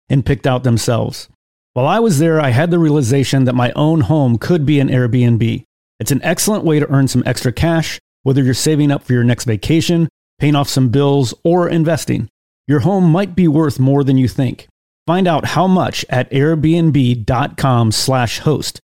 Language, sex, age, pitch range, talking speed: English, male, 40-59, 125-160 Hz, 190 wpm